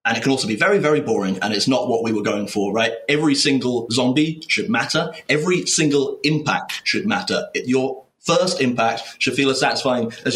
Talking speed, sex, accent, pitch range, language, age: 205 wpm, male, British, 115-145 Hz, English, 30-49